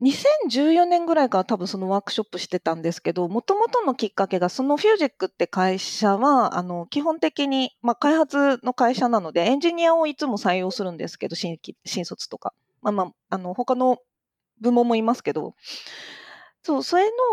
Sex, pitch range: female, 185-285 Hz